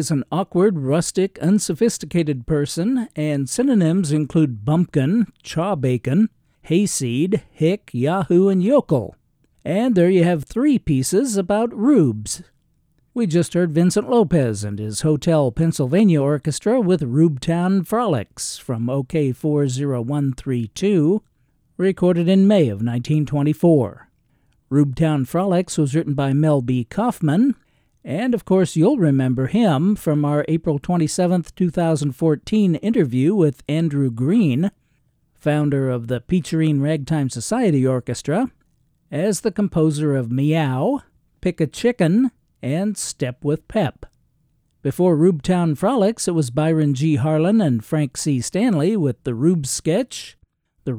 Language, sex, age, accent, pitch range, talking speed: English, male, 50-69, American, 140-190 Hz, 125 wpm